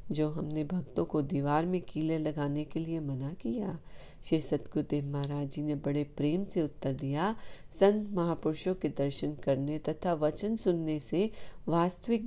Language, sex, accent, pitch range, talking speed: Hindi, female, native, 145-180 Hz, 155 wpm